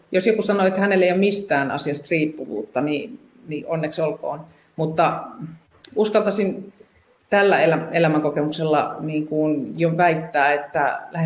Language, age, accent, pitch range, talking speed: Finnish, 30-49, native, 150-200 Hz, 125 wpm